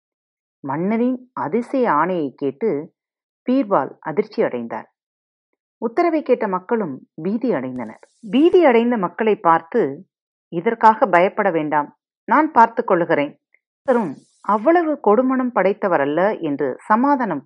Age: 40-59